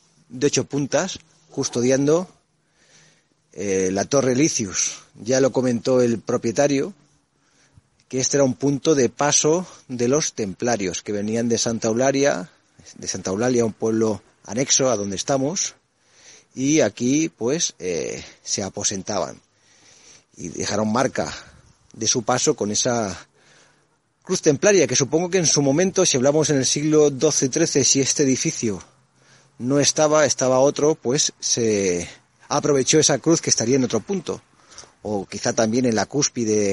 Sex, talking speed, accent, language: male, 145 wpm, Spanish, Spanish